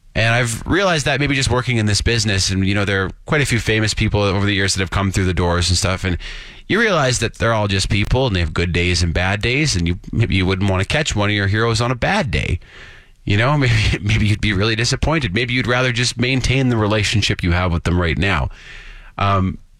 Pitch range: 95-130 Hz